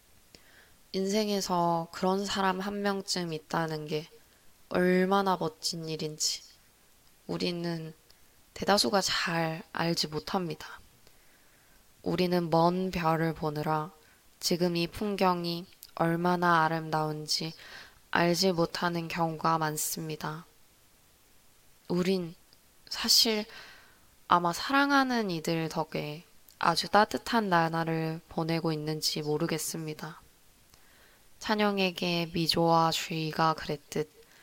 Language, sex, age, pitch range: Korean, female, 20-39, 160-190 Hz